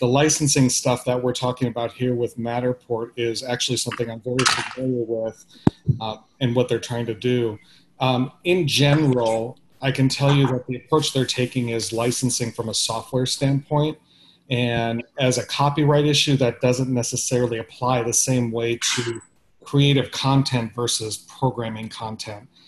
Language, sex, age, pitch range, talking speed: English, male, 40-59, 120-140 Hz, 160 wpm